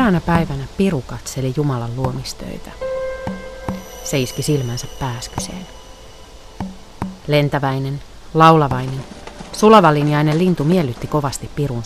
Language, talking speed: Finnish, 85 wpm